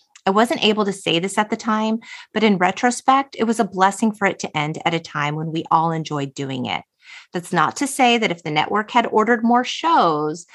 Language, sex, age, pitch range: English, female, 30-49, 160-220 Hz